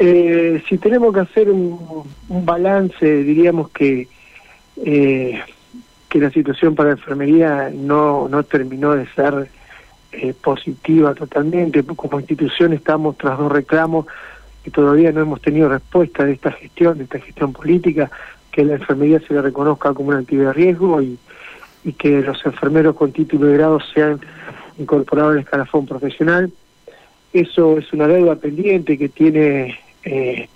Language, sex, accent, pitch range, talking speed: Spanish, male, Argentinian, 140-160 Hz, 155 wpm